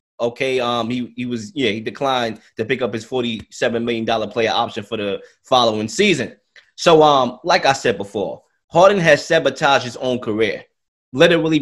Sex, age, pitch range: male, 20-39, 115-150 Hz